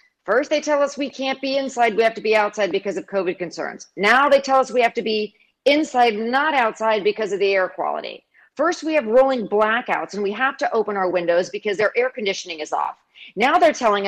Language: English